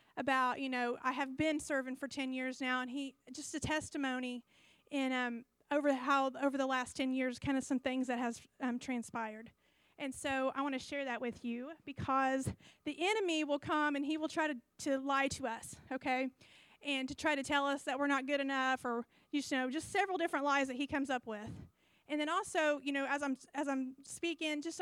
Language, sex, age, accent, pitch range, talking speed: English, female, 30-49, American, 255-295 Hz, 220 wpm